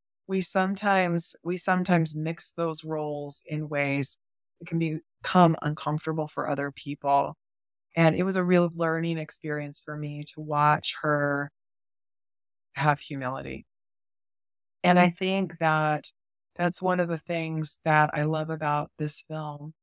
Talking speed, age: 135 wpm, 20-39